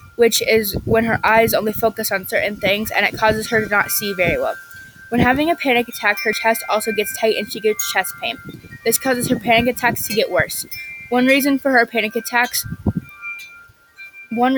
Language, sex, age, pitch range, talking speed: English, female, 20-39, 205-235 Hz, 200 wpm